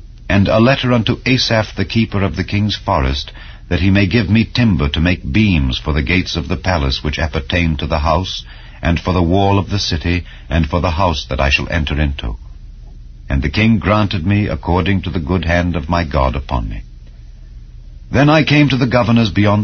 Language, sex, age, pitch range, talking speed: English, male, 60-79, 70-100 Hz, 210 wpm